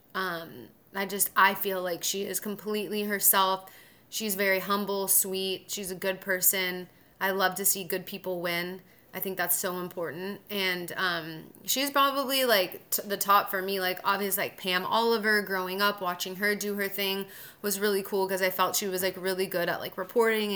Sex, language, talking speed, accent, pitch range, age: female, English, 190 wpm, American, 185-205 Hz, 20-39